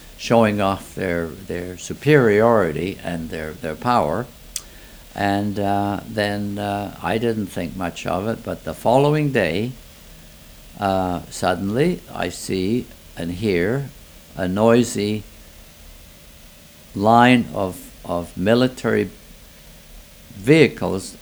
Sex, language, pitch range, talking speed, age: male, English, 80-110 Hz, 100 wpm, 60-79